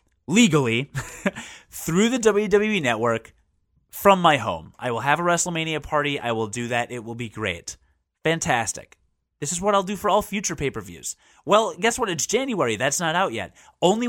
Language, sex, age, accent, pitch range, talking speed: English, male, 30-49, American, 120-185 Hz, 180 wpm